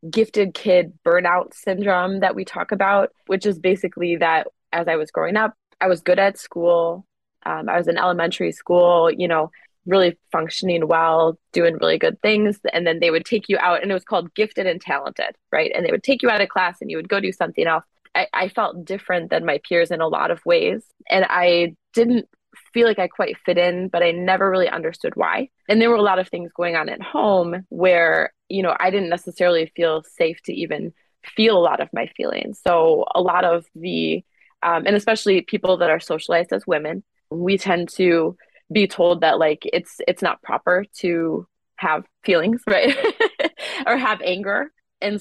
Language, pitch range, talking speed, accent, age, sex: English, 170-210 Hz, 205 wpm, American, 20-39, female